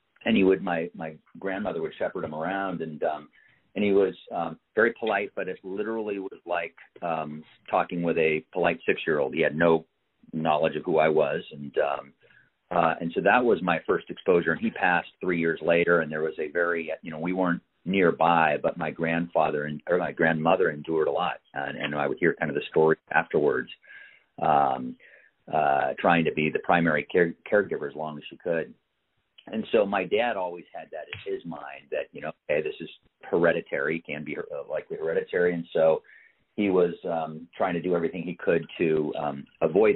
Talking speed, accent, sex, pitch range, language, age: 205 wpm, American, male, 80-105 Hz, English, 40-59